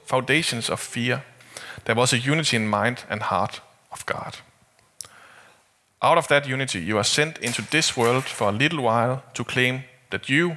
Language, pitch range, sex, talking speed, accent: Danish, 115-145 Hz, male, 175 wpm, native